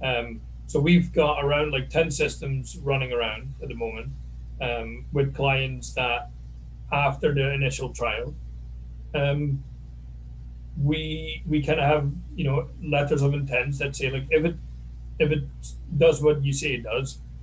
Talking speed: 155 wpm